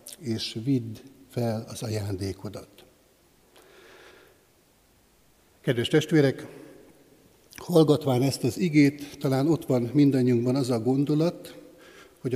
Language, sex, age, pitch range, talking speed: Hungarian, male, 60-79, 120-150 Hz, 90 wpm